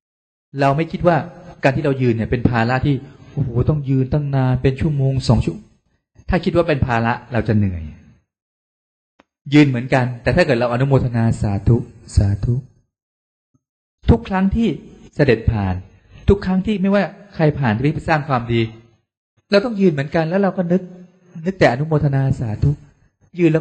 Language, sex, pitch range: Thai, male, 100-140 Hz